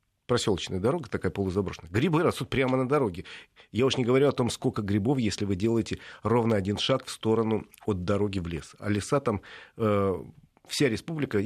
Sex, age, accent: male, 40-59, native